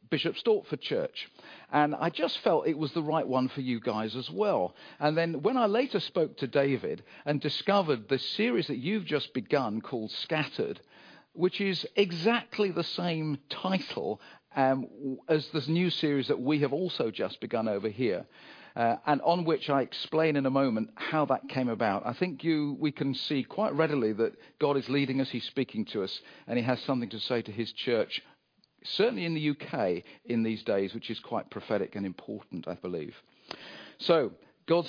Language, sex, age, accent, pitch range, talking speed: English, male, 50-69, British, 120-160 Hz, 190 wpm